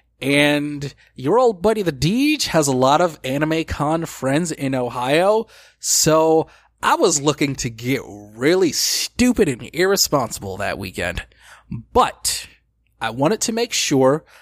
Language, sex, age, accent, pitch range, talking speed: English, male, 20-39, American, 130-170 Hz, 135 wpm